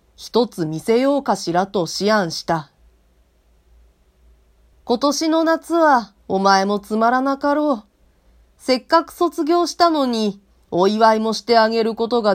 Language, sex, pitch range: Japanese, female, 170-265 Hz